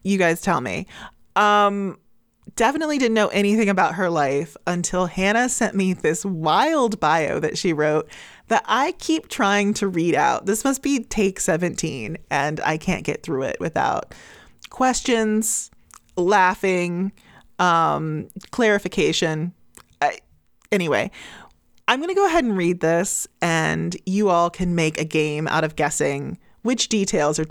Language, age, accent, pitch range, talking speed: English, 20-39, American, 160-205 Hz, 145 wpm